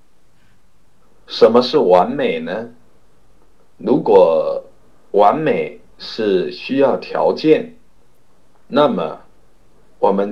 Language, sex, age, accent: Chinese, male, 50-69, native